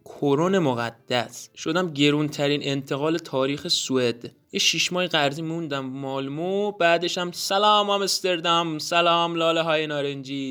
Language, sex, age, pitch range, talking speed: Persian, male, 20-39, 135-180 Hz, 115 wpm